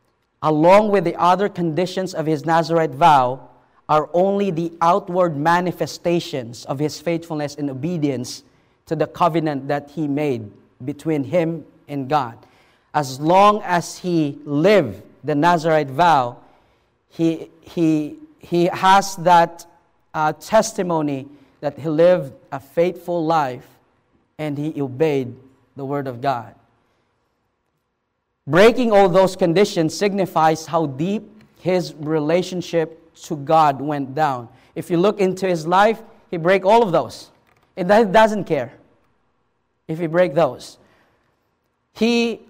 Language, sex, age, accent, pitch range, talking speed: English, male, 40-59, Filipino, 150-185 Hz, 125 wpm